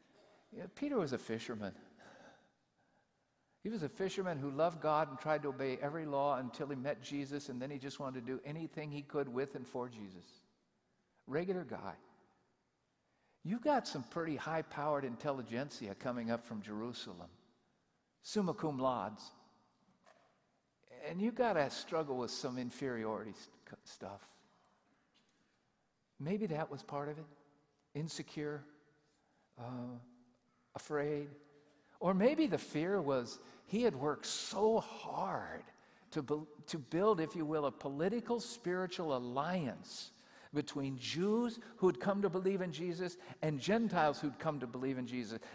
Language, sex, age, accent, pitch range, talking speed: English, male, 50-69, American, 135-190 Hz, 140 wpm